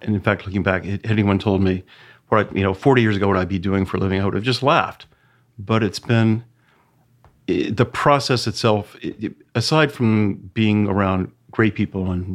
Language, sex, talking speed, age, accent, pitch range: English, male, 200 wpm, 50-69, American, 95-115 Hz